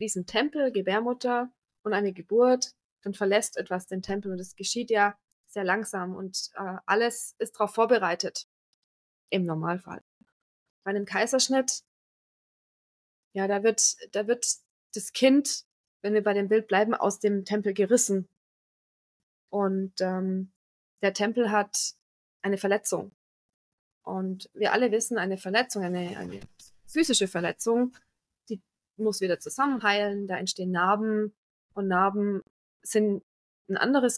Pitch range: 195-235 Hz